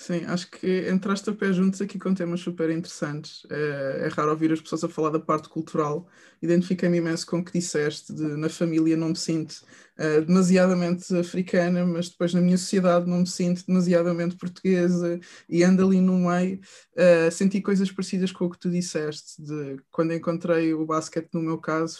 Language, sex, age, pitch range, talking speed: English, male, 20-39, 160-180 Hz, 190 wpm